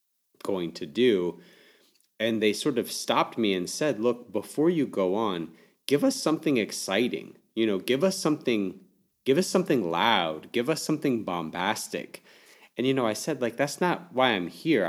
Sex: male